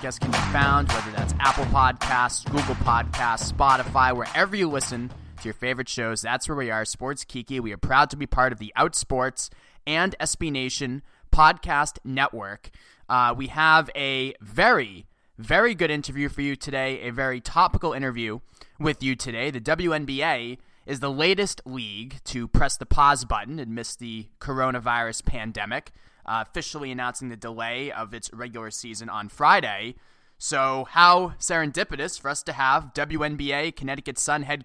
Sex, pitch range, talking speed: male, 120-150 Hz, 160 wpm